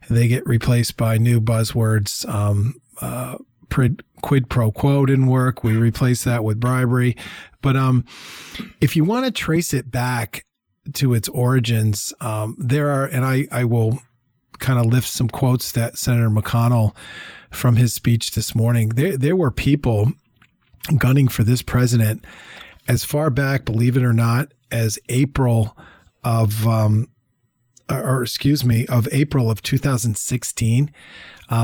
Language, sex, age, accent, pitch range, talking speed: English, male, 40-59, American, 115-130 Hz, 145 wpm